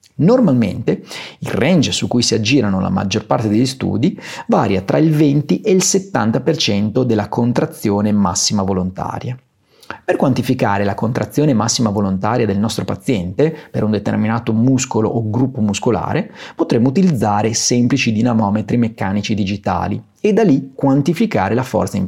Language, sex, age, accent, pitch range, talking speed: Italian, male, 30-49, native, 105-145 Hz, 140 wpm